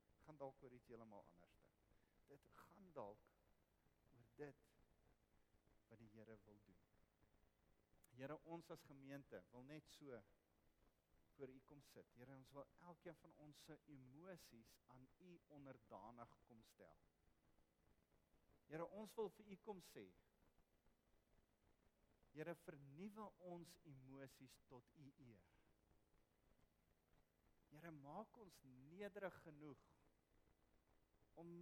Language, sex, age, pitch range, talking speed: English, male, 50-69, 105-155 Hz, 110 wpm